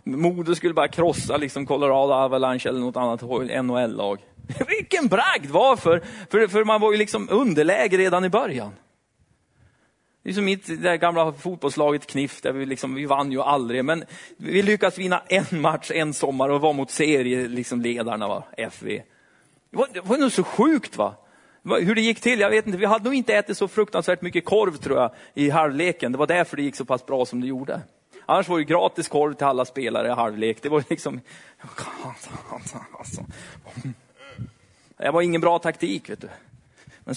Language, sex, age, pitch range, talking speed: Swedish, male, 30-49, 135-190 Hz, 185 wpm